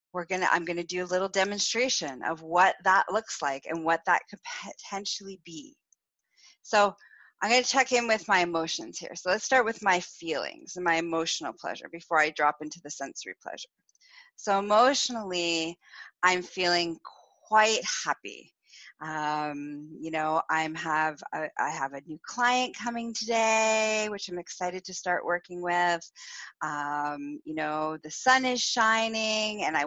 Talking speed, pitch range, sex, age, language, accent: 160 wpm, 170-240 Hz, female, 30-49, English, American